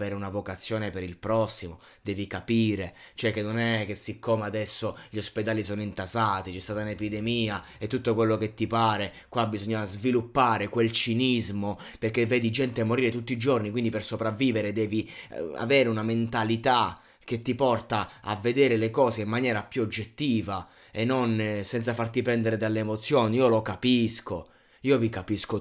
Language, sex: Italian, male